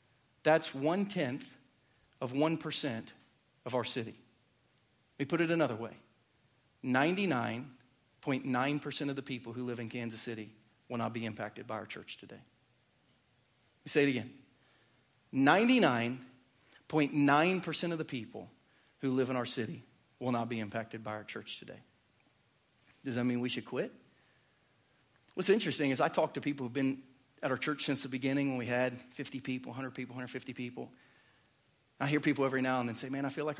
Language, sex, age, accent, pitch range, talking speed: English, male, 40-59, American, 120-150 Hz, 170 wpm